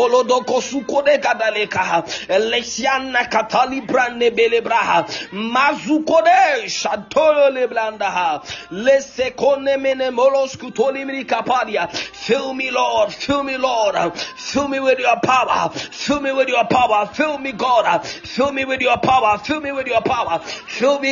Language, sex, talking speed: English, male, 110 wpm